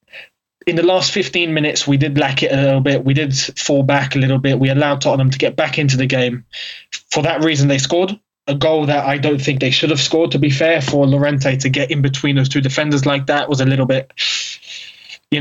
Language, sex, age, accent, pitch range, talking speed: English, male, 20-39, British, 135-160 Hz, 240 wpm